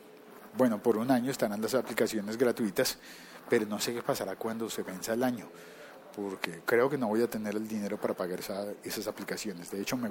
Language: Spanish